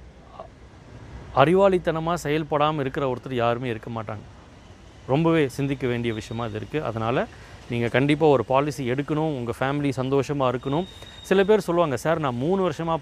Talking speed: 140 wpm